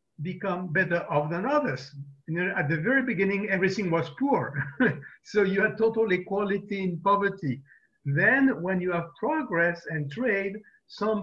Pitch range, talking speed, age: 155-200 Hz, 155 wpm, 50-69